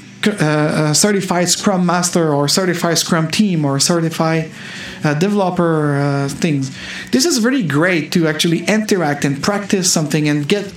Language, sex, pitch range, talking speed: English, male, 150-190 Hz, 150 wpm